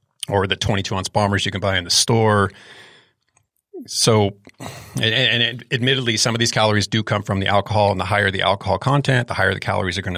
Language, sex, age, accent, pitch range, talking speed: English, male, 30-49, American, 100-120 Hz, 210 wpm